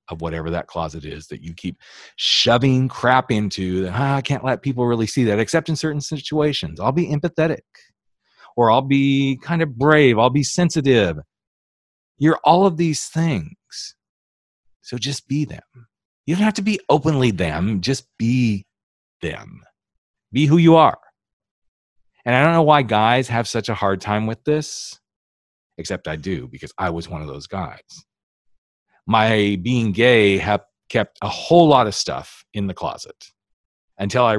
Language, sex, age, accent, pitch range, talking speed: English, male, 40-59, American, 95-145 Hz, 170 wpm